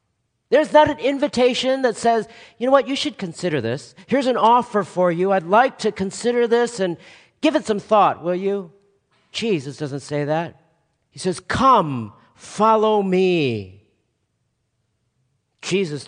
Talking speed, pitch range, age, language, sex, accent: 150 wpm, 150-210 Hz, 40-59, English, male, American